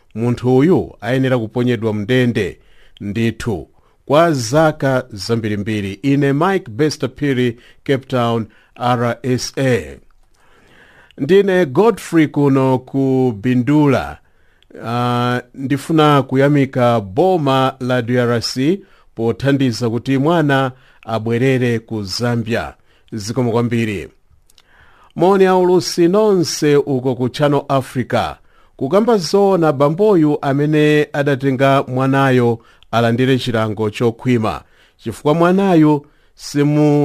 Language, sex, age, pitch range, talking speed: English, male, 50-69, 115-150 Hz, 85 wpm